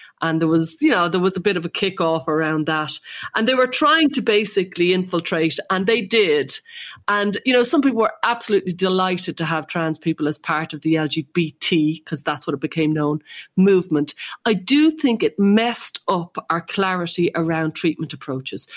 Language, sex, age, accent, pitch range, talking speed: English, female, 40-59, Irish, 155-200 Hz, 190 wpm